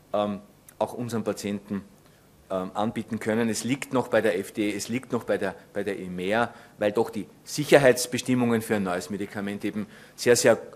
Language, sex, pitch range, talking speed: German, male, 105-130 Hz, 180 wpm